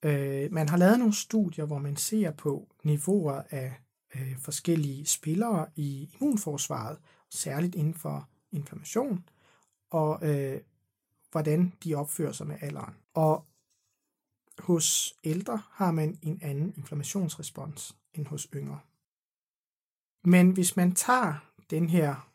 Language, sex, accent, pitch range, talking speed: Danish, male, native, 140-180 Hz, 115 wpm